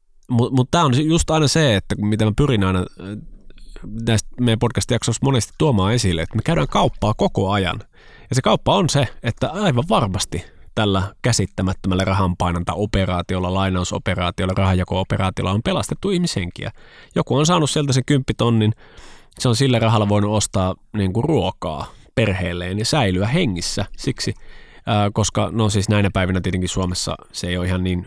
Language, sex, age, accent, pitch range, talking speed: Finnish, male, 20-39, native, 95-120 Hz, 150 wpm